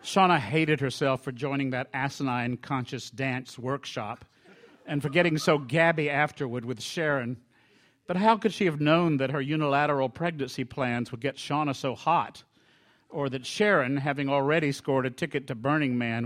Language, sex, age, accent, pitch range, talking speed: English, male, 50-69, American, 120-150 Hz, 165 wpm